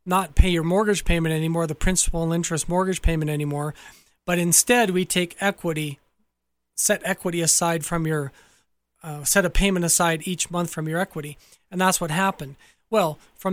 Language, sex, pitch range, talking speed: English, male, 160-190 Hz, 175 wpm